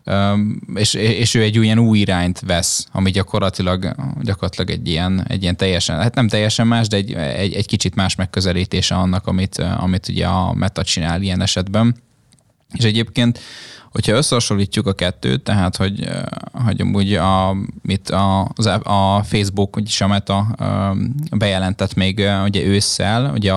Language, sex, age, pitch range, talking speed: Hungarian, male, 20-39, 95-110 Hz, 135 wpm